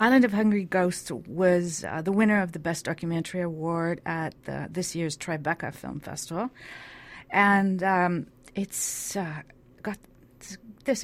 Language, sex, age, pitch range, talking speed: English, female, 40-59, 150-185 Hz, 140 wpm